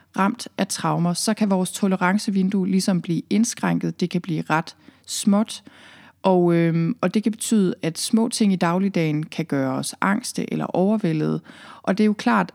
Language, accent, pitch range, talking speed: Danish, native, 175-215 Hz, 175 wpm